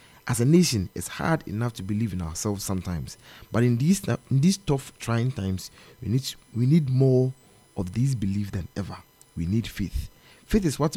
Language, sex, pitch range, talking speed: English, male, 100-130 Hz, 195 wpm